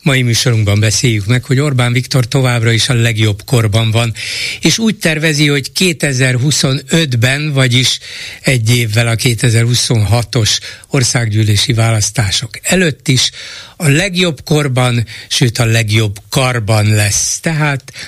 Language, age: Hungarian, 60-79